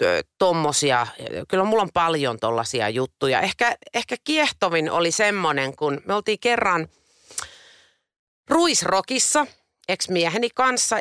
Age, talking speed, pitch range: 30-49, 110 wpm, 150-230 Hz